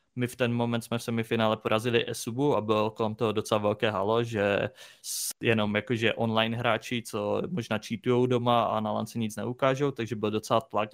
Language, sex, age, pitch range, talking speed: Czech, male, 20-39, 110-120 Hz, 185 wpm